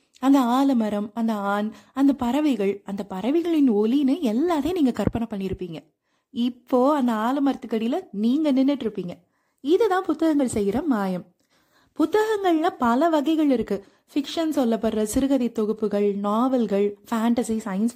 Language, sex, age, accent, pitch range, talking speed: Tamil, female, 30-49, native, 215-285 Hz, 115 wpm